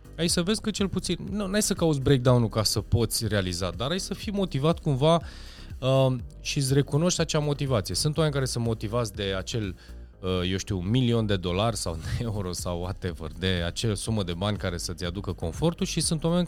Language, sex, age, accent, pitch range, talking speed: Romanian, male, 20-39, native, 95-130 Hz, 210 wpm